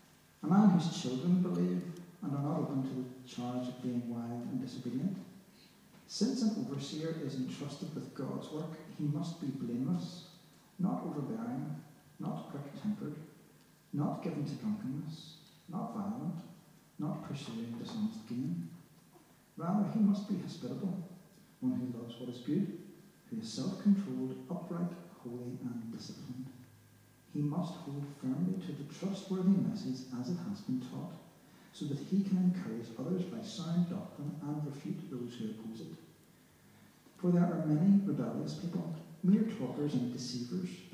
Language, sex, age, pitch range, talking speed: English, male, 60-79, 135-195 Hz, 145 wpm